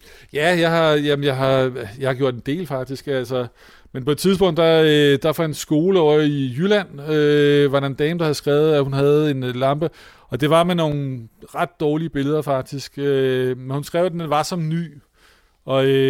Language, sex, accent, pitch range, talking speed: Danish, male, native, 130-150 Hz, 200 wpm